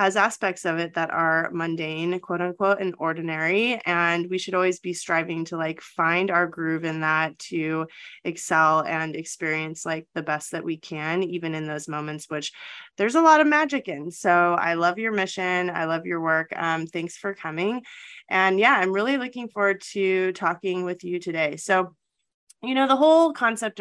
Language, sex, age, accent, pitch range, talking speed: English, female, 20-39, American, 160-195 Hz, 190 wpm